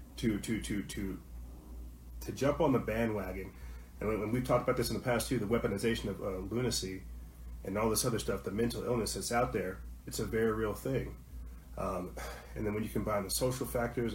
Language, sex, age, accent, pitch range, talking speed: English, male, 30-49, American, 95-120 Hz, 200 wpm